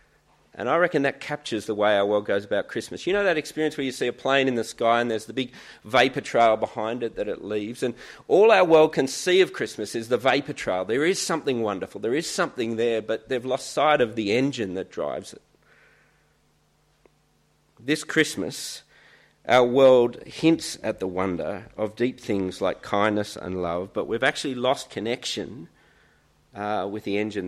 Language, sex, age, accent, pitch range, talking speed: English, male, 40-59, Australian, 100-135 Hz, 195 wpm